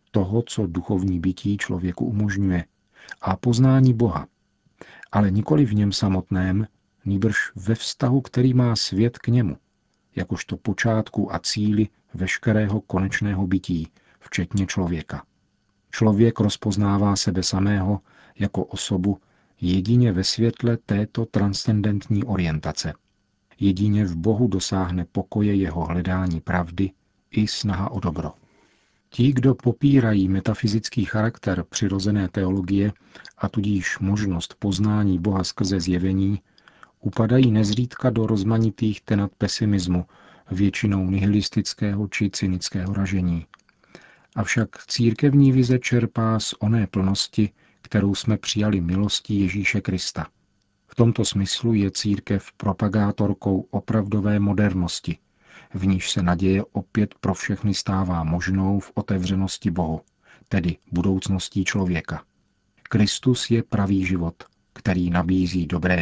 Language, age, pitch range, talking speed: Czech, 50-69, 95-110 Hz, 110 wpm